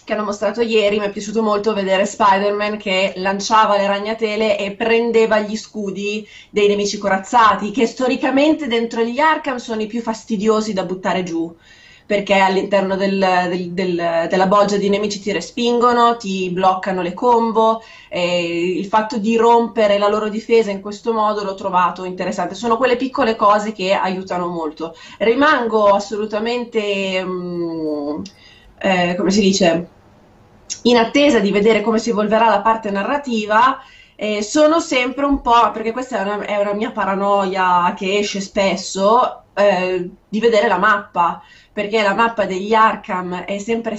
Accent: native